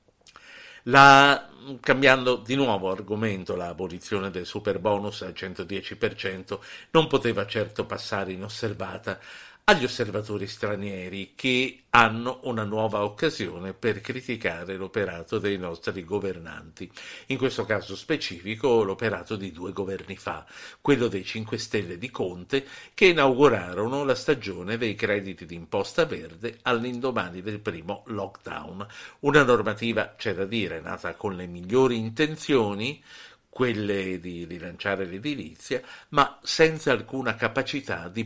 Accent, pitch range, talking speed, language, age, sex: native, 100-130 Hz, 120 wpm, Italian, 50-69, male